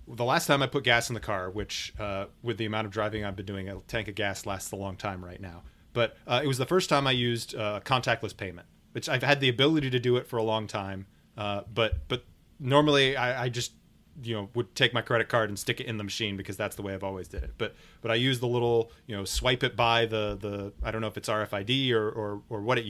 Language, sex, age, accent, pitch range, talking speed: English, male, 30-49, American, 100-125 Hz, 275 wpm